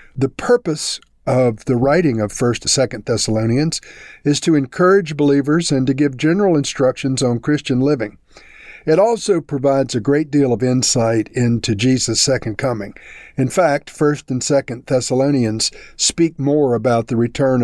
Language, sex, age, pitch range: English, male, 50-69, 120-145 Hz